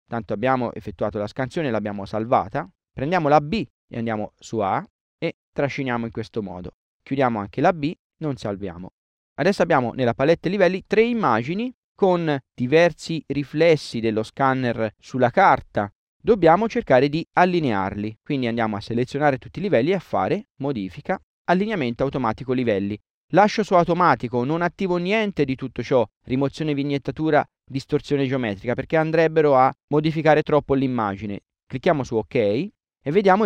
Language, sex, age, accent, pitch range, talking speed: Italian, male, 30-49, native, 120-175 Hz, 145 wpm